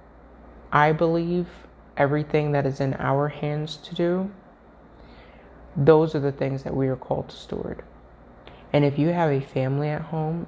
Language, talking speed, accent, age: English, 160 wpm, American, 20-39